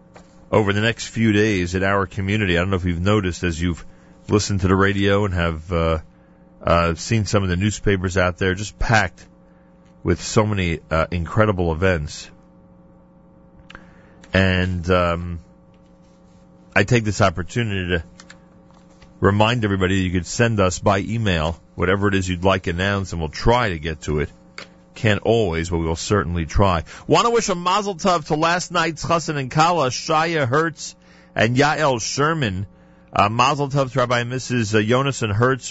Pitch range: 85-115 Hz